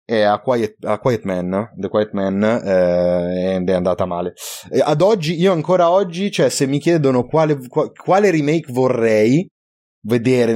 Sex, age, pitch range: male, 20-39, 100-130 Hz